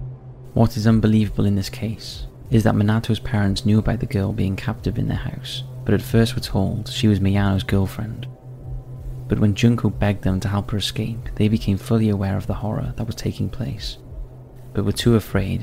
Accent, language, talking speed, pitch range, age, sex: British, English, 200 wpm, 100-115 Hz, 20-39, male